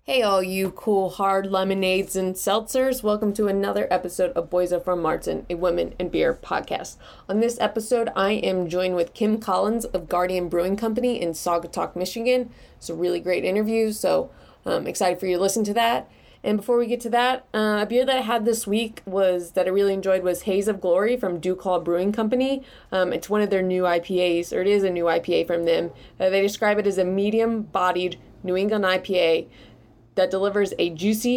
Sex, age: female, 30-49